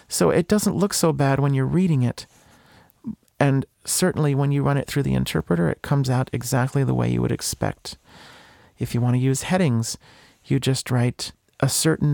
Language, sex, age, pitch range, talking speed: English, male, 40-59, 125-145 Hz, 195 wpm